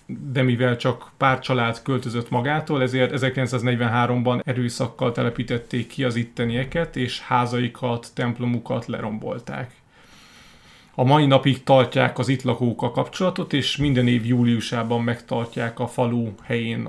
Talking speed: 125 wpm